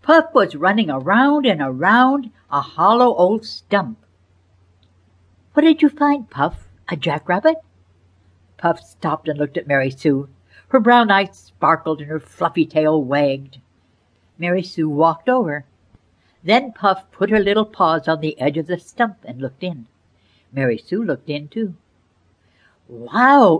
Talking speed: 145 wpm